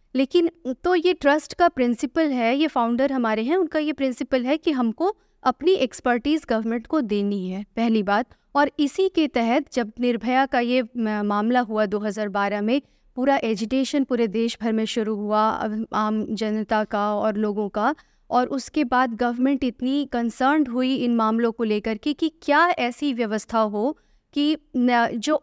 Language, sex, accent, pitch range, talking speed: Hindi, female, native, 230-300 Hz, 165 wpm